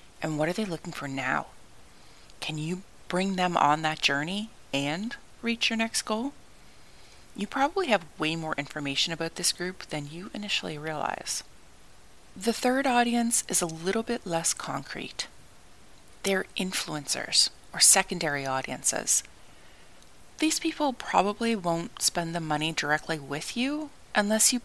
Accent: American